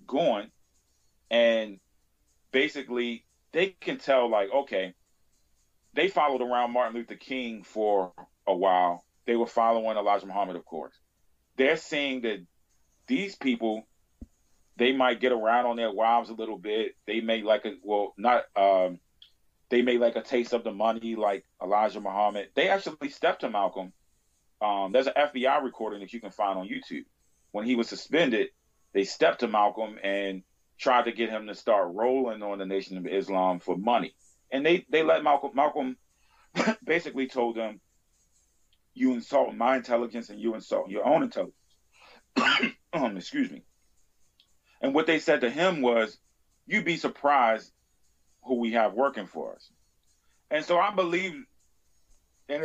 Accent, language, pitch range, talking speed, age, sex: American, English, 100-135 Hz, 160 wpm, 30-49, male